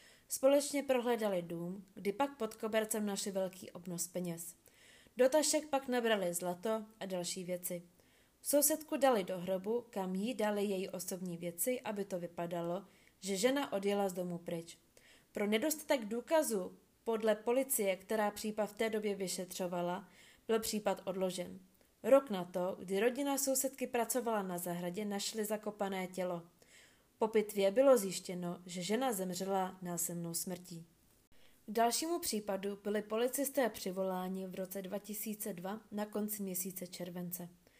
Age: 20-39